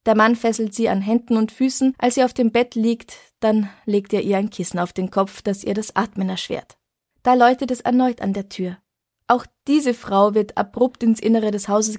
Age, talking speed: 20-39, 220 wpm